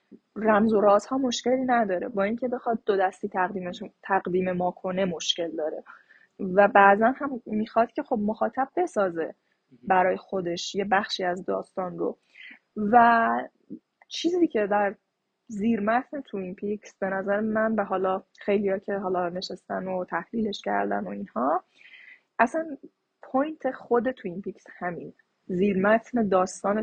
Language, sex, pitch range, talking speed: Persian, female, 190-235 Hz, 135 wpm